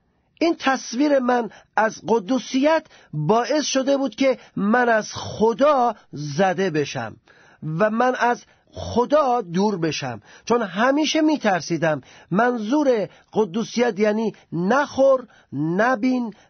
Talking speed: 105 wpm